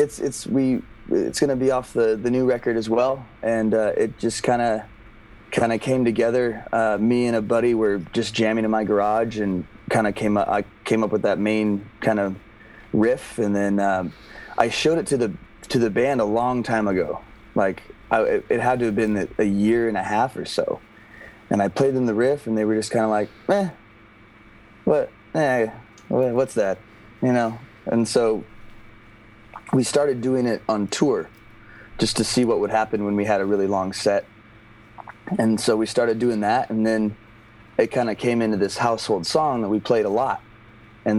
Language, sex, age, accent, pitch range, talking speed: English, male, 30-49, American, 105-120 Hz, 200 wpm